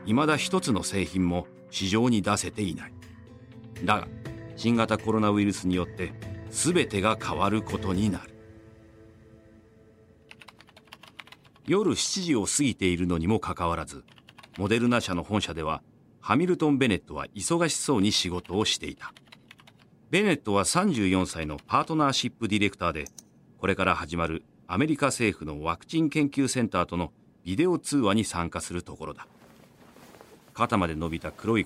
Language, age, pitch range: Japanese, 40-59, 90-120 Hz